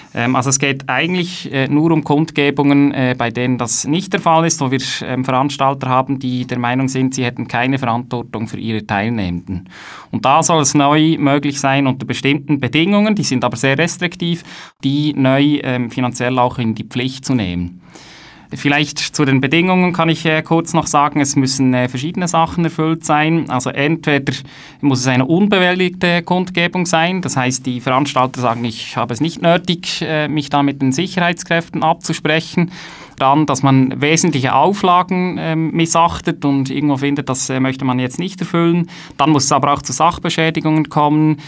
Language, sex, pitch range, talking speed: English, male, 130-165 Hz, 170 wpm